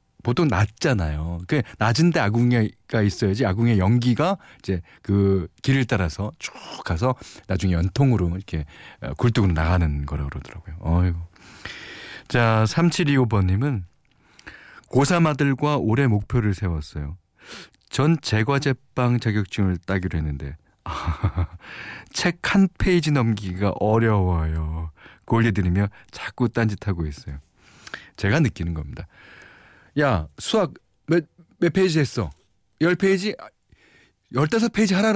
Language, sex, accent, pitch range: Korean, male, native, 90-135 Hz